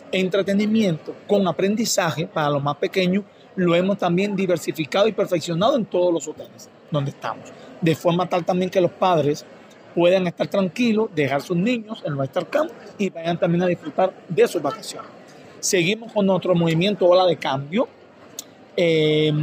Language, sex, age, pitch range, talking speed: Spanish, male, 40-59, 160-195 Hz, 160 wpm